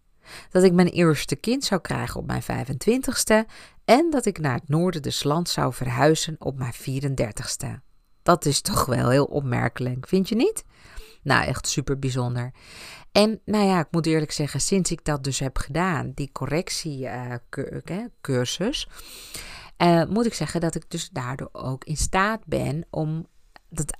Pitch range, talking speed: 140-185 Hz, 170 wpm